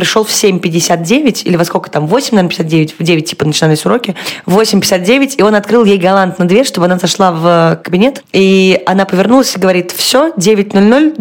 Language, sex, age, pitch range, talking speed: Russian, female, 20-39, 185-225 Hz, 175 wpm